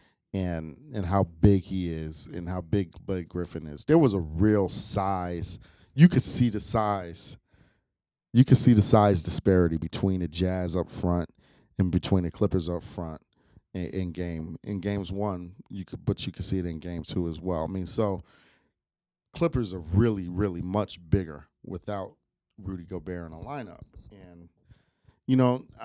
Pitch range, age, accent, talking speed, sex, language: 85-105 Hz, 40-59, American, 175 wpm, male, English